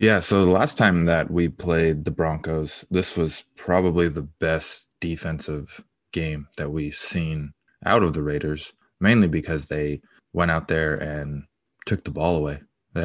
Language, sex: English, male